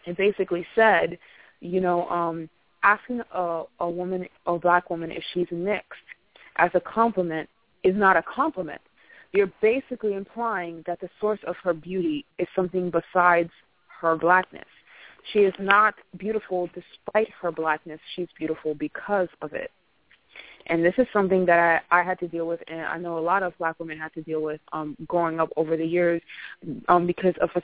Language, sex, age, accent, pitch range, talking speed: English, female, 20-39, American, 170-195 Hz, 180 wpm